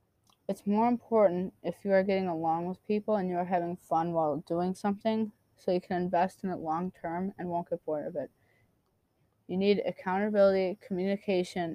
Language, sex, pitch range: English, female, 170-195 Hz